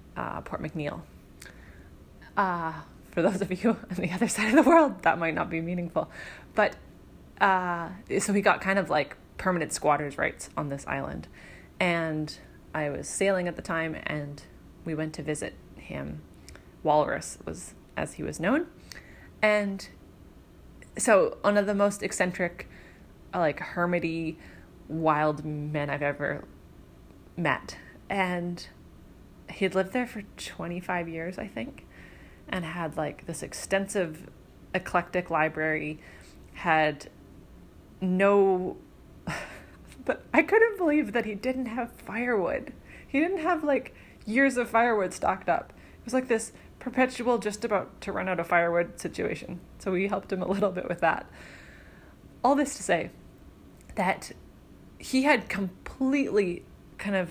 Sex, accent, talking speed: female, American, 140 wpm